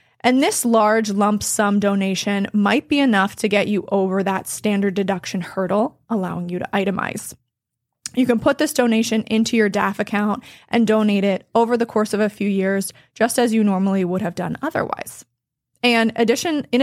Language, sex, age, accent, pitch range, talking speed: English, female, 20-39, American, 200-235 Hz, 180 wpm